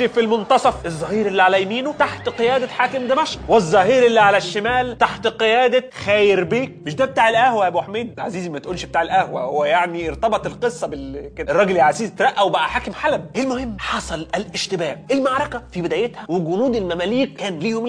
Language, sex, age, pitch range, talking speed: Arabic, male, 30-49, 195-280 Hz, 175 wpm